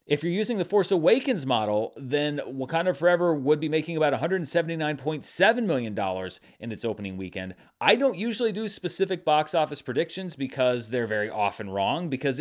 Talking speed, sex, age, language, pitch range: 165 wpm, male, 30-49, English, 115-160 Hz